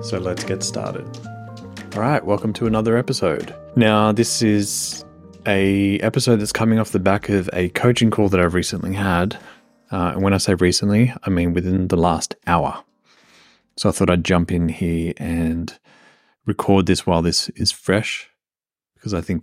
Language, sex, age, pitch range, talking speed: English, male, 20-39, 90-105 Hz, 175 wpm